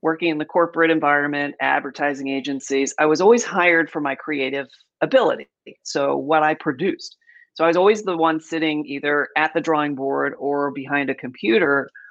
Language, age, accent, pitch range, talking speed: English, 40-59, American, 145-180 Hz, 175 wpm